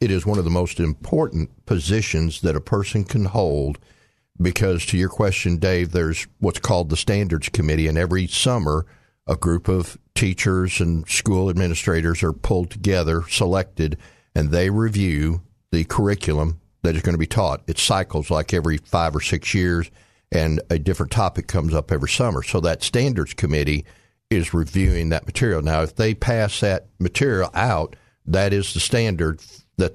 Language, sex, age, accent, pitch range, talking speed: English, male, 60-79, American, 80-105 Hz, 170 wpm